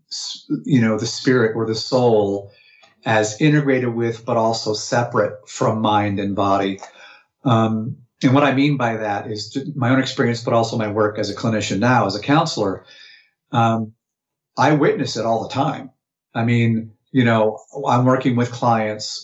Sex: male